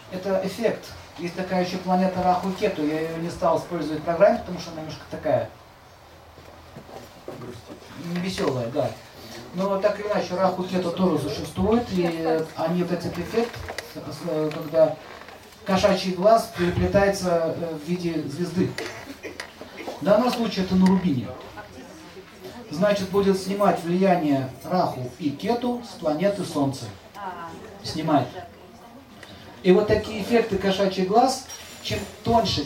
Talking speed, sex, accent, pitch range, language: 125 wpm, male, native, 165-195 Hz, Russian